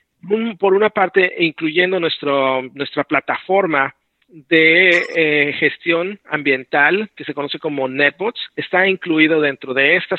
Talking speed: 120 wpm